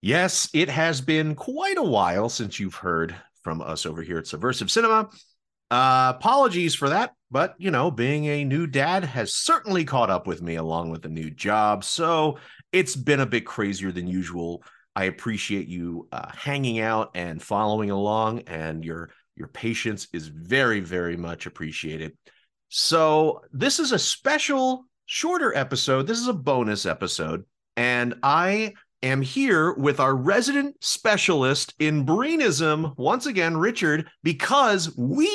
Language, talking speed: English, 155 wpm